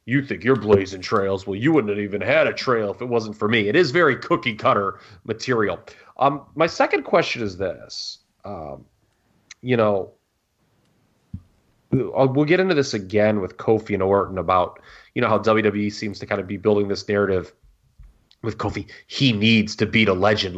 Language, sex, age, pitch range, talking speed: English, male, 30-49, 100-125 Hz, 185 wpm